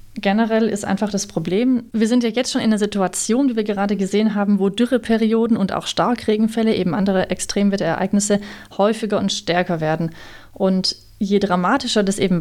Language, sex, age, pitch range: German, female, 30-49, 190-220 Hz